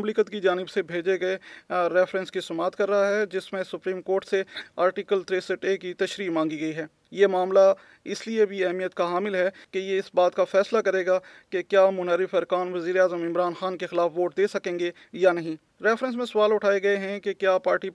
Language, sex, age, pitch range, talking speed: Urdu, male, 30-49, 180-205 Hz, 170 wpm